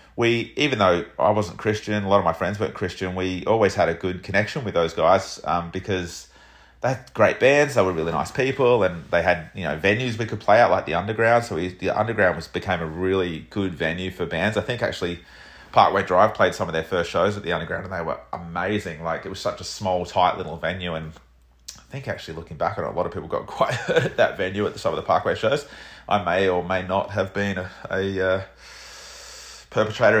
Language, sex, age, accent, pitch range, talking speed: English, male, 30-49, Australian, 90-105 Hz, 240 wpm